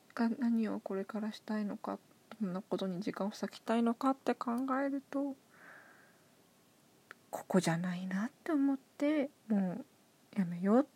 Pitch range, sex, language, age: 210-255 Hz, female, Japanese, 20-39